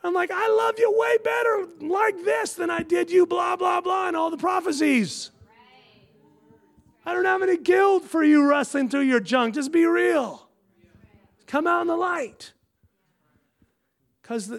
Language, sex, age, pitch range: English, male, 40-59, 190-290 Hz